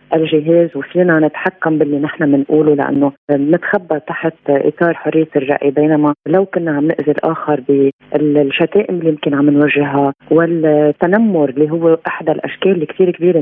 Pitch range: 150-180 Hz